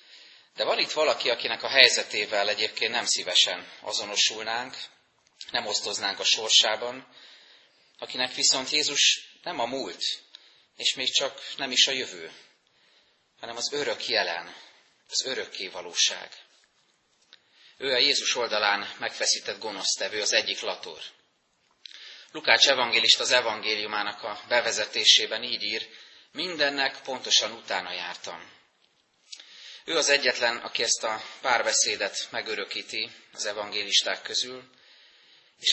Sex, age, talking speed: male, 30-49, 115 wpm